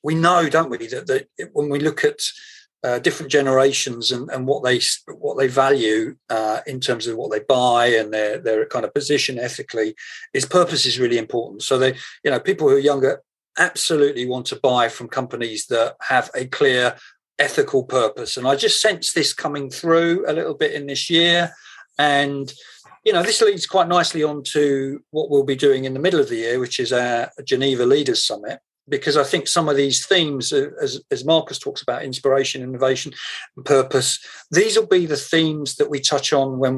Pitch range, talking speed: 130-175 Hz, 200 wpm